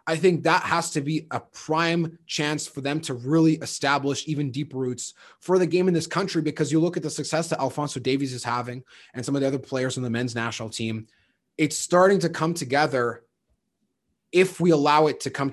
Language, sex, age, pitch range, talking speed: English, male, 20-39, 130-160 Hz, 215 wpm